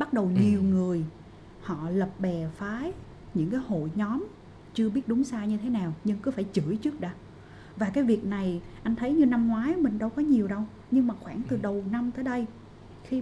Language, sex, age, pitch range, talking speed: Vietnamese, female, 20-39, 185-235 Hz, 220 wpm